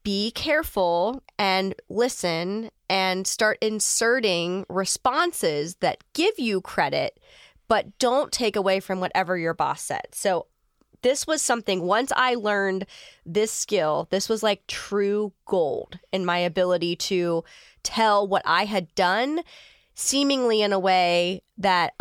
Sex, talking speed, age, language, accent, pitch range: female, 135 wpm, 20-39, English, American, 190-255 Hz